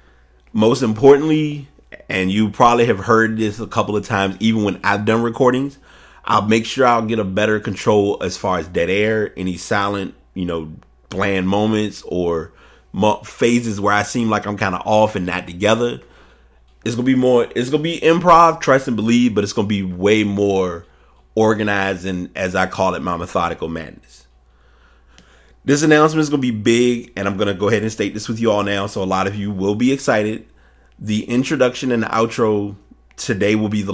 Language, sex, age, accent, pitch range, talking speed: English, male, 30-49, American, 90-110 Hz, 200 wpm